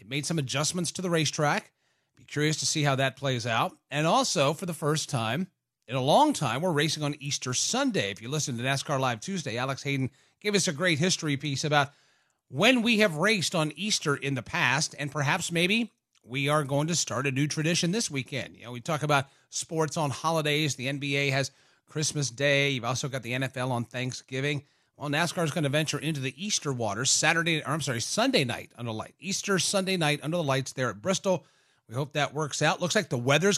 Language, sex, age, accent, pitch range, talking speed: English, male, 30-49, American, 140-170 Hz, 225 wpm